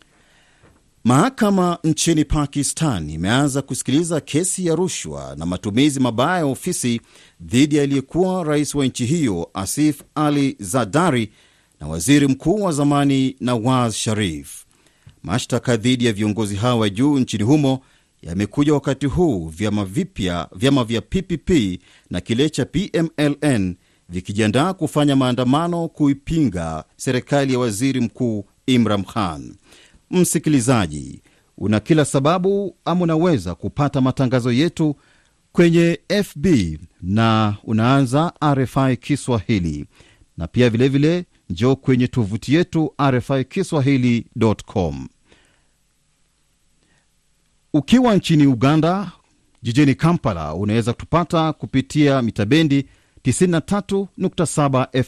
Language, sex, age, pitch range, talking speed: Swahili, male, 40-59, 110-150 Hz, 100 wpm